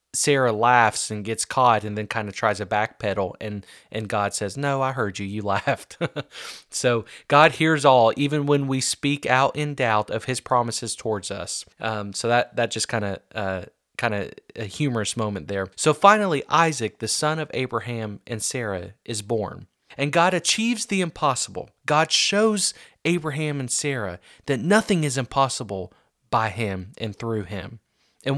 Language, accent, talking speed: English, American, 175 wpm